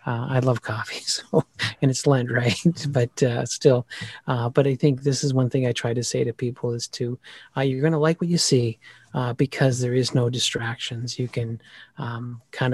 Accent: American